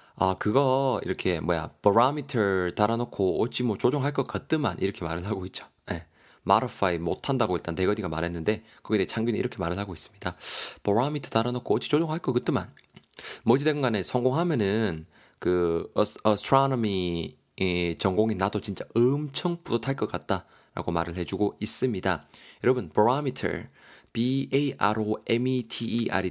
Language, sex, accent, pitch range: Korean, male, native, 95-130 Hz